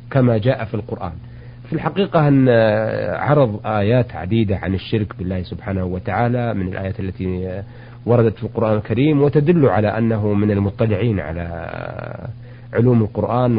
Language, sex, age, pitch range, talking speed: Arabic, male, 50-69, 110-130 Hz, 135 wpm